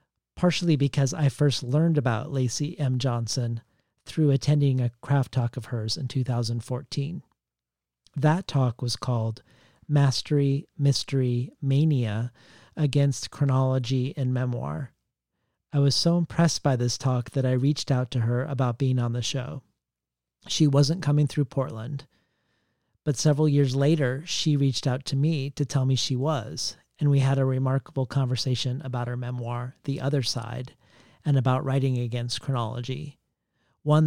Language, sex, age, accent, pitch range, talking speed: English, male, 40-59, American, 120-140 Hz, 150 wpm